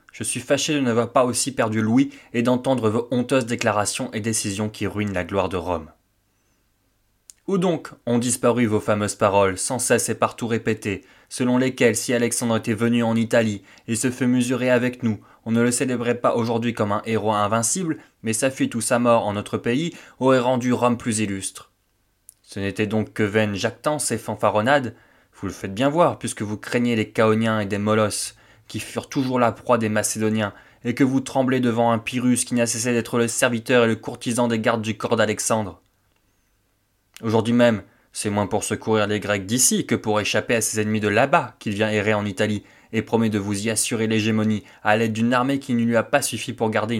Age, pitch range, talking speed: 20-39, 105-120 Hz, 210 wpm